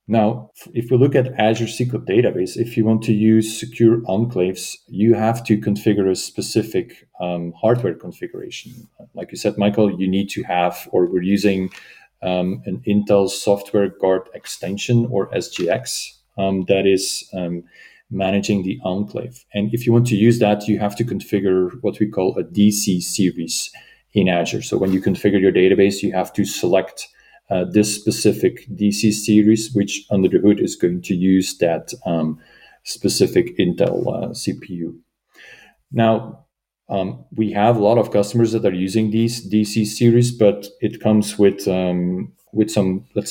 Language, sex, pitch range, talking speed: English, male, 95-115 Hz, 165 wpm